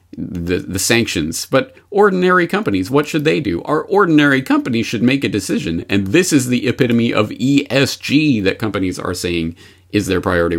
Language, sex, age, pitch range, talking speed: English, male, 40-59, 95-140 Hz, 175 wpm